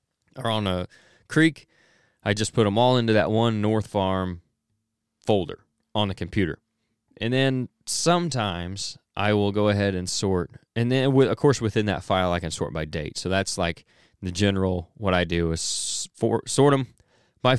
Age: 20-39